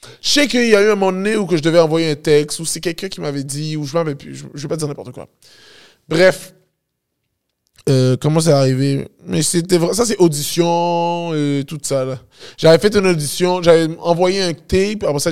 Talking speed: 220 wpm